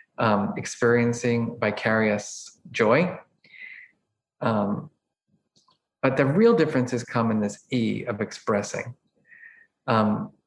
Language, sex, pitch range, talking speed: English, male, 110-130 Hz, 90 wpm